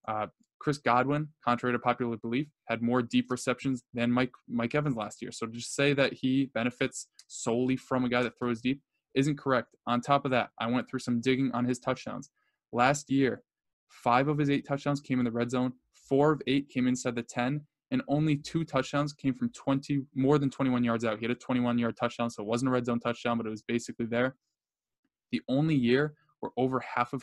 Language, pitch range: English, 120-135 Hz